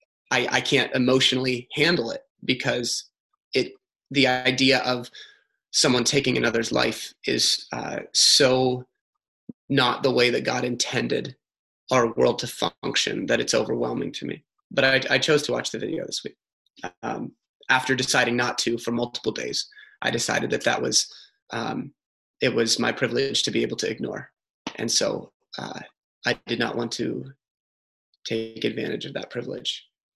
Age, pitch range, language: 20-39, 125-165 Hz, English